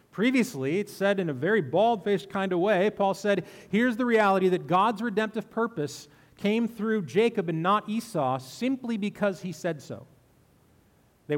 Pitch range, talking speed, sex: 150-210 Hz, 170 wpm, male